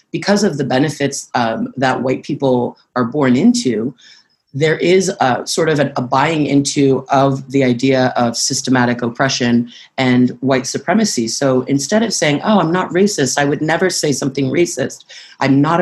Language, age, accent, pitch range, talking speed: English, 30-49, American, 130-150 Hz, 170 wpm